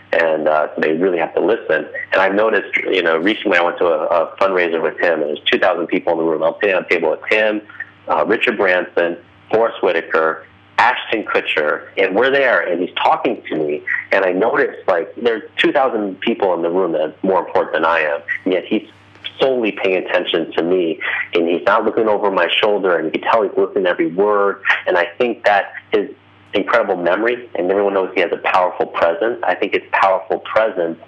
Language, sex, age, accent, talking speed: English, male, 30-49, American, 215 wpm